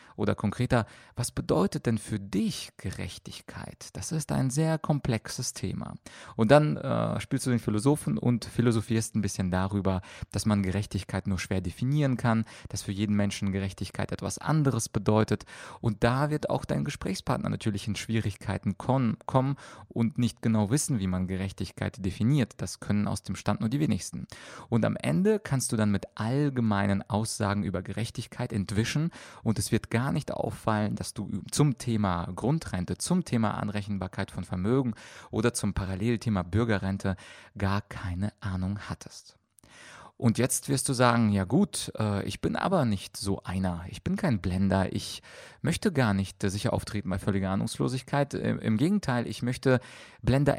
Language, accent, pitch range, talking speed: German, German, 100-125 Hz, 160 wpm